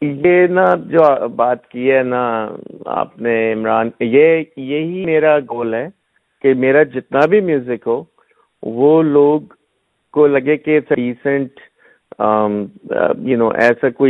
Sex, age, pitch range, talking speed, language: male, 50-69, 115-140 Hz, 110 wpm, Urdu